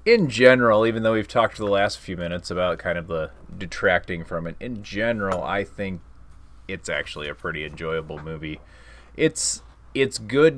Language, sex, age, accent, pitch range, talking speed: English, male, 30-49, American, 80-105 Hz, 175 wpm